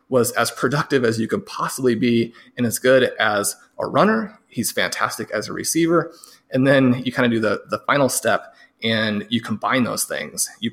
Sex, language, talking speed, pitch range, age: male, English, 195 wpm, 115-145 Hz, 30-49